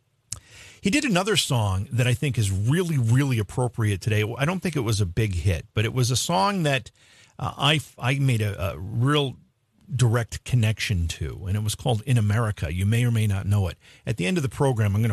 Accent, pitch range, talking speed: American, 100-130 Hz, 225 wpm